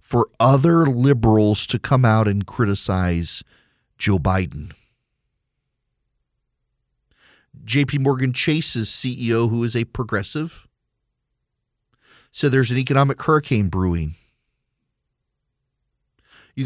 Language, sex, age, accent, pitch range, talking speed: English, male, 40-59, American, 125-170 Hz, 90 wpm